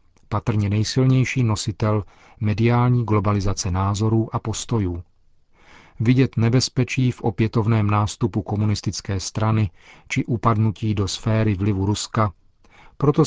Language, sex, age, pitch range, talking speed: Czech, male, 40-59, 100-120 Hz, 100 wpm